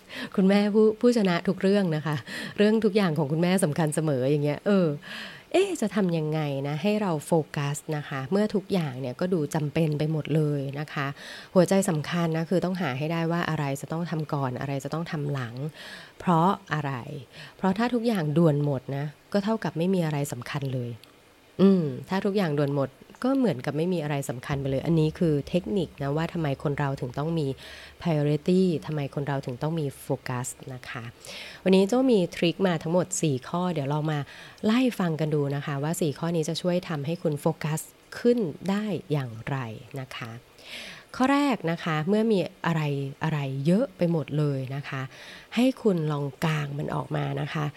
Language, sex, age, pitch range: English, female, 20-39, 145-185 Hz